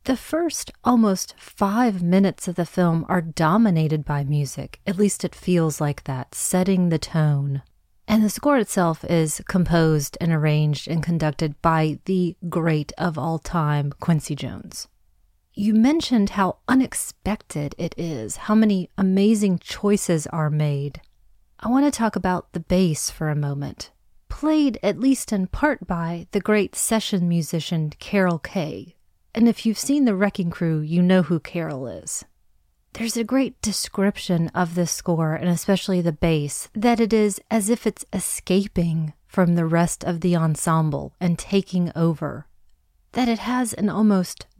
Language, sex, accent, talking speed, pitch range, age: English, female, American, 155 wpm, 160-205 Hz, 30-49